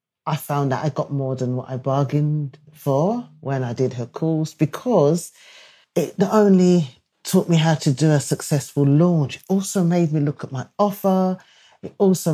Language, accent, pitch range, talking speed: English, British, 135-160 Hz, 185 wpm